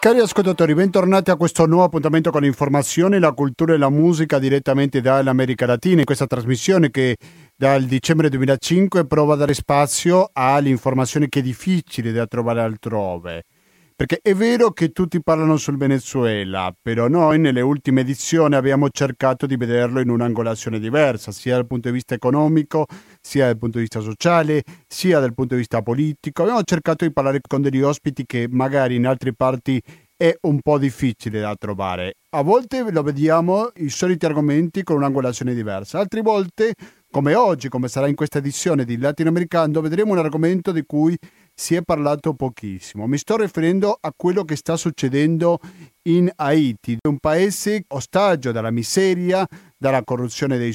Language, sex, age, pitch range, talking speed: Italian, male, 40-59, 130-170 Hz, 165 wpm